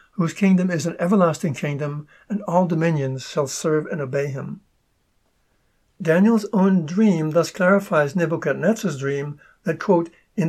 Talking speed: 135 wpm